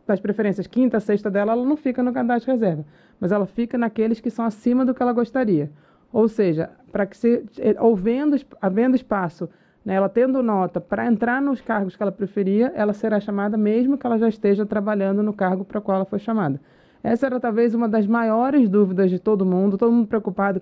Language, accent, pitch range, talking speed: Portuguese, Brazilian, 190-230 Hz, 210 wpm